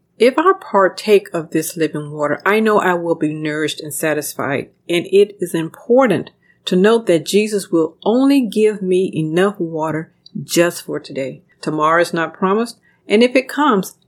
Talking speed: 170 wpm